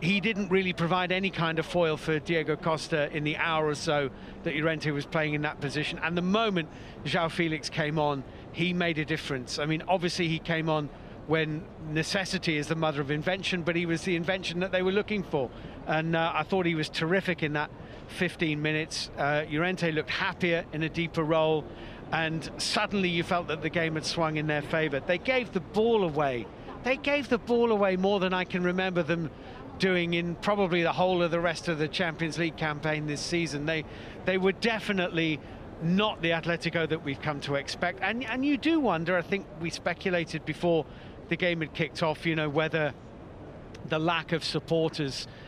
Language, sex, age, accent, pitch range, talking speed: English, male, 50-69, British, 155-180 Hz, 200 wpm